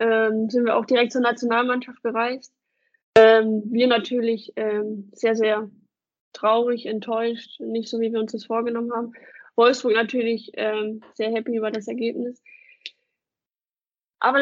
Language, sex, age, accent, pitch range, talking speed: German, female, 20-39, German, 220-245 Hz, 135 wpm